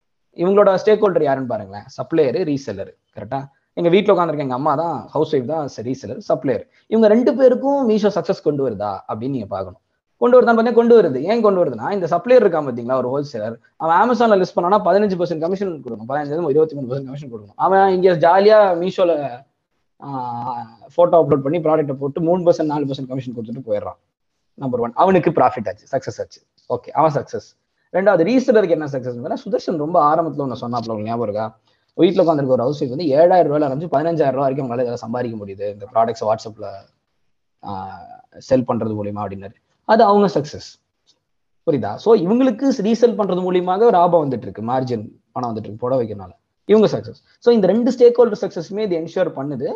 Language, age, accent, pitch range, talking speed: Tamil, 20-39, native, 130-205 Hz, 155 wpm